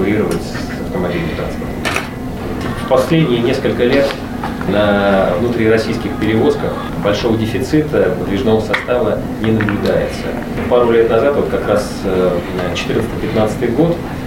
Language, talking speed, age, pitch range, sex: Russian, 95 wpm, 30-49, 90-110 Hz, male